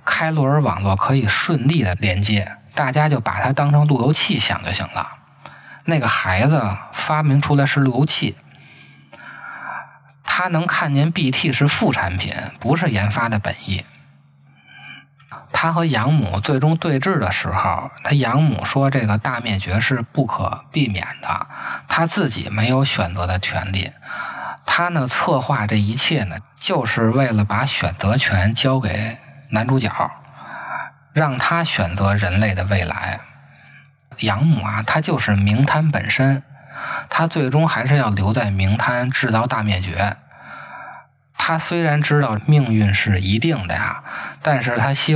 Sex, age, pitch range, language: male, 20-39, 100-145 Hz, Chinese